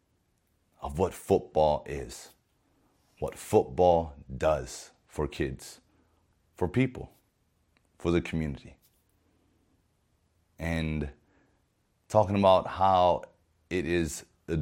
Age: 30-49